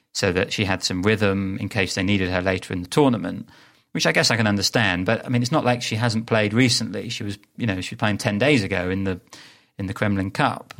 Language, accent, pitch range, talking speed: English, British, 95-115 Hz, 260 wpm